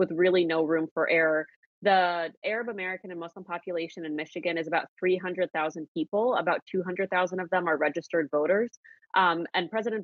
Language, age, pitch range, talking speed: English, 20-39, 160-185 Hz, 165 wpm